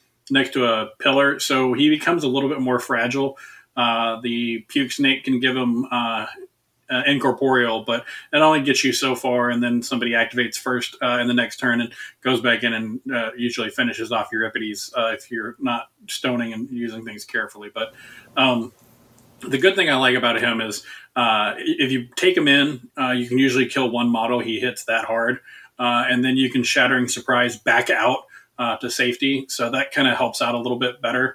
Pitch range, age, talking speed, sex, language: 120-140 Hz, 30-49, 205 wpm, male, English